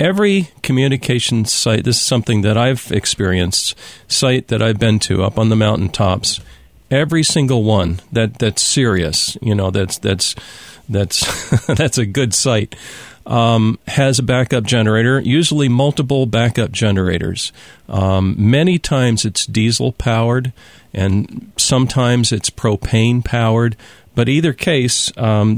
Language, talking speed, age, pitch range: English, 135 wpm, 40-59, 105-135 Hz